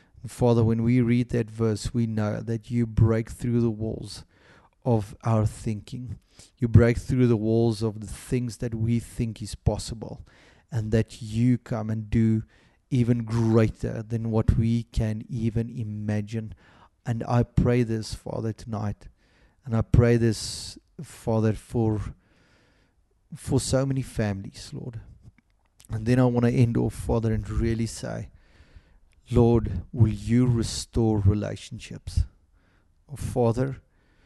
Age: 30-49